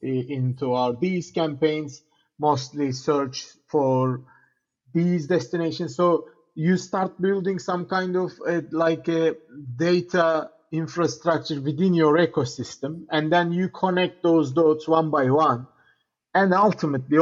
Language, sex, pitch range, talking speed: English, male, 135-160 Hz, 120 wpm